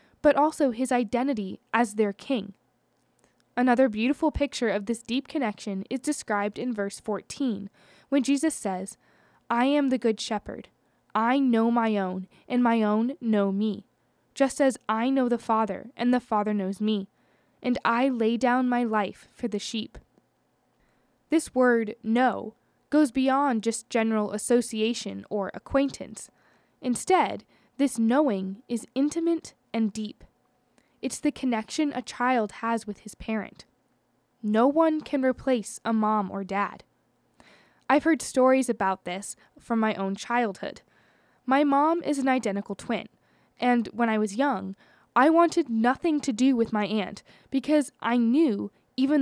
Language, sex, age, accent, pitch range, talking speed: English, female, 10-29, American, 215-275 Hz, 150 wpm